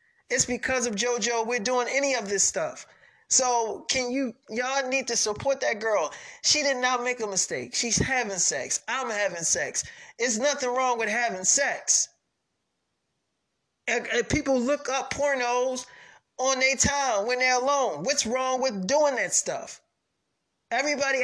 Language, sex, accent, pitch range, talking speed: English, male, American, 235-275 Hz, 160 wpm